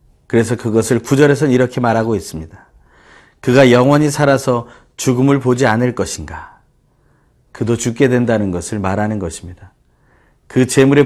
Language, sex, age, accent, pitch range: Korean, male, 40-59, native, 105-135 Hz